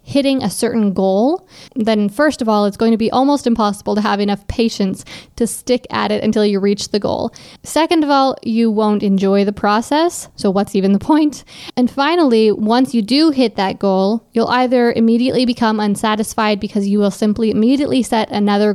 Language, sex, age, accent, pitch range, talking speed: English, female, 20-39, American, 210-245 Hz, 190 wpm